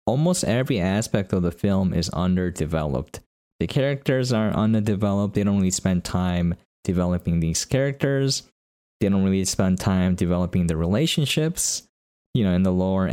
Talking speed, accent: 150 wpm, American